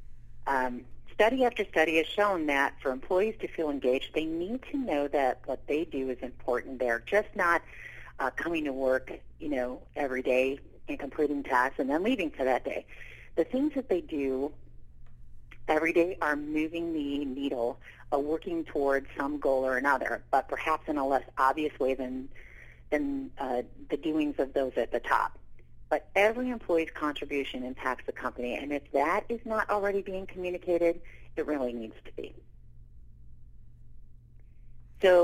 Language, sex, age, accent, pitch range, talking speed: English, female, 40-59, American, 130-170 Hz, 165 wpm